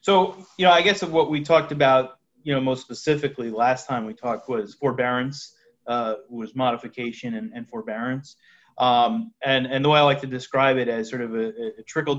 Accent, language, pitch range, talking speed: American, English, 120-140 Hz, 205 wpm